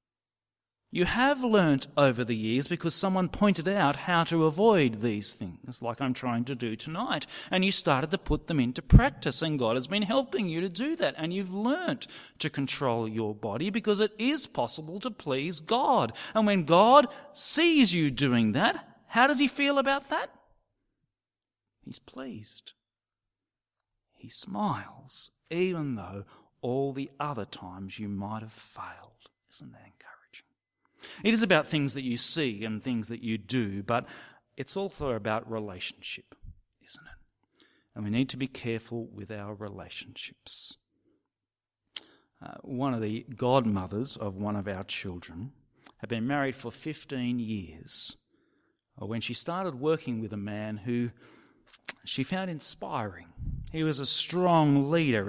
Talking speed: 155 wpm